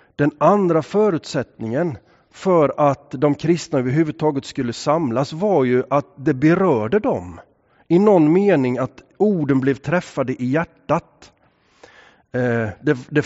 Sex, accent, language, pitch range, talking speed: male, Swedish, English, 135-185 Hz, 120 wpm